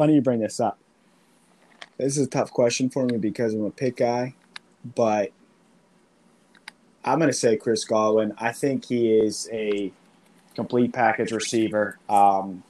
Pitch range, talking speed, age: 120-160 Hz, 160 wpm, 20-39